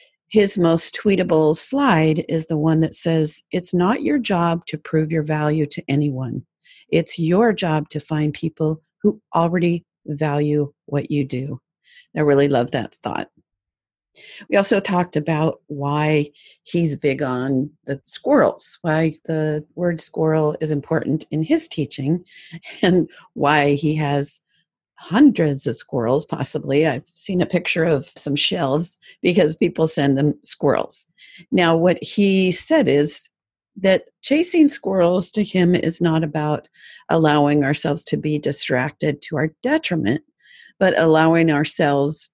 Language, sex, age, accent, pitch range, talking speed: English, female, 50-69, American, 150-185 Hz, 140 wpm